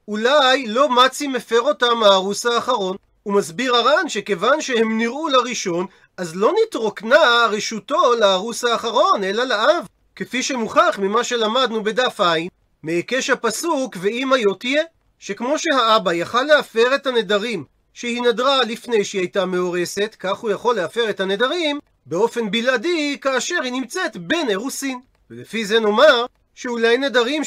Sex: male